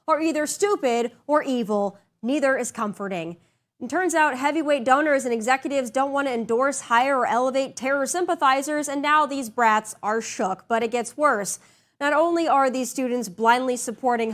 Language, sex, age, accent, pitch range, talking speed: English, female, 30-49, American, 230-300 Hz, 165 wpm